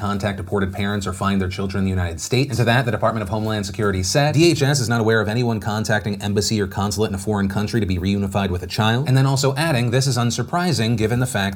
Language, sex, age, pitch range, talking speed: English, male, 30-49, 100-125 Hz, 260 wpm